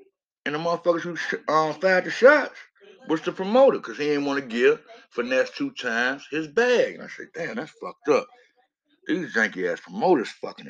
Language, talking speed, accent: English, 185 wpm, American